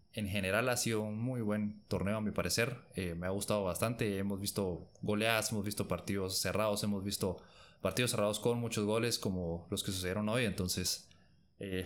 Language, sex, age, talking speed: Spanish, male, 20-39, 185 wpm